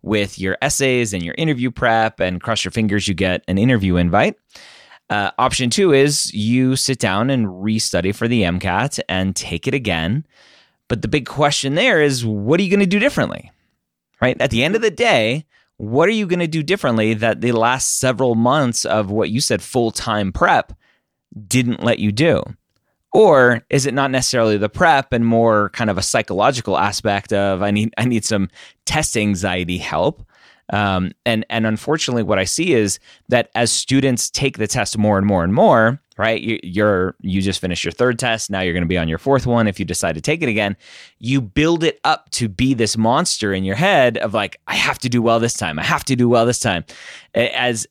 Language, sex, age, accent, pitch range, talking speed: English, male, 20-39, American, 100-130 Hz, 210 wpm